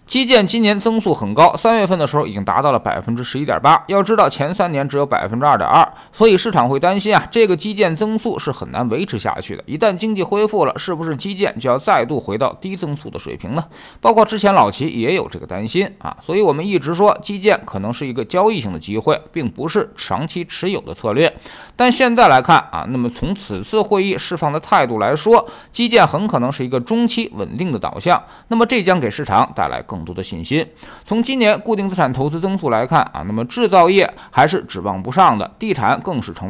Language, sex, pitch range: Chinese, male, 140-210 Hz